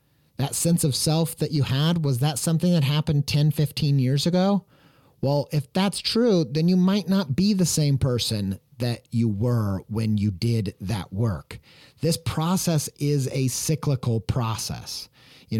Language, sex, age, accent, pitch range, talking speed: English, male, 30-49, American, 120-150 Hz, 165 wpm